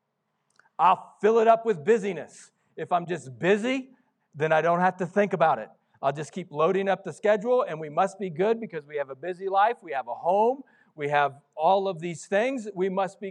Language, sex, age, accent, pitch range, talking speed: English, male, 40-59, American, 190-255 Hz, 220 wpm